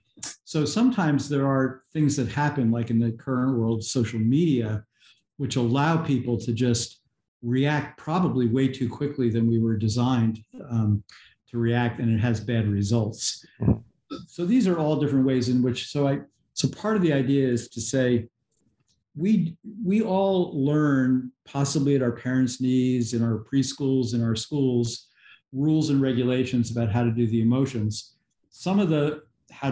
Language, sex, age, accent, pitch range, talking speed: English, male, 50-69, American, 115-140 Hz, 165 wpm